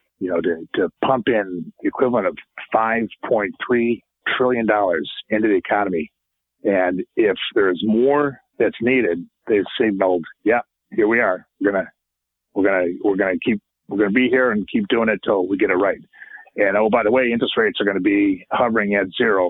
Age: 50-69